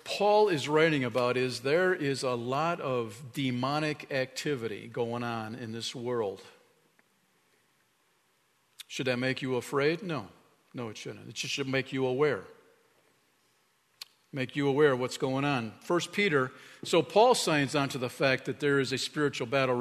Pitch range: 140-190 Hz